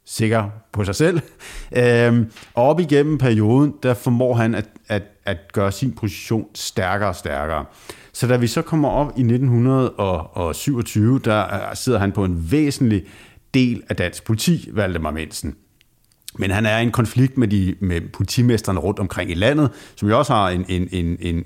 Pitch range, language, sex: 95-120 Hz, Danish, male